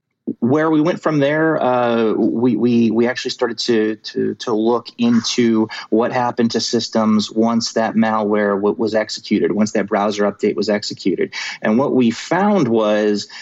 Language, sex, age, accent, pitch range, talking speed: English, male, 30-49, American, 105-125 Hz, 165 wpm